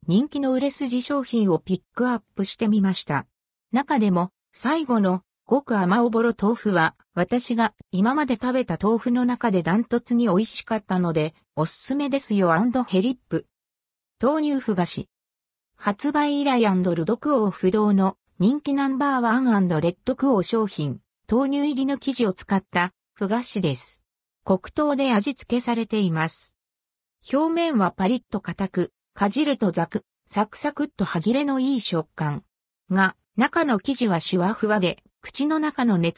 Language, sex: Japanese, female